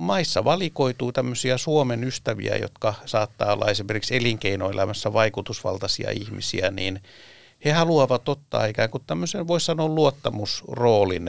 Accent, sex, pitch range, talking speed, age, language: native, male, 105-130 Hz, 115 wpm, 60-79, Finnish